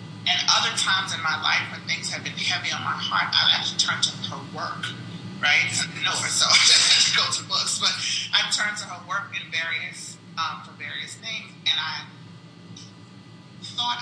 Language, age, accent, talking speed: English, 30-49, American, 180 wpm